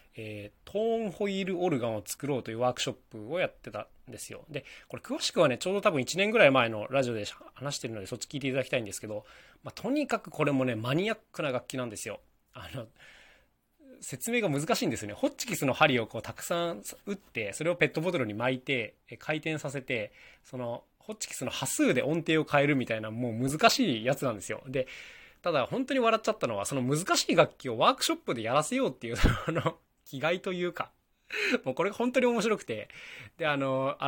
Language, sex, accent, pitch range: Japanese, male, native, 115-180 Hz